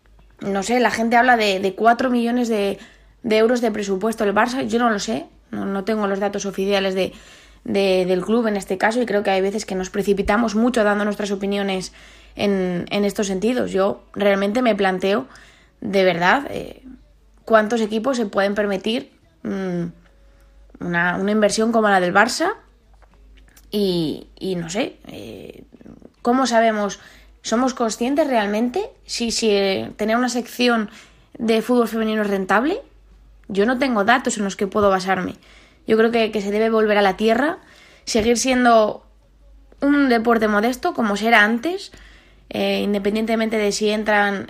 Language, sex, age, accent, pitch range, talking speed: Spanish, female, 20-39, Spanish, 200-235 Hz, 160 wpm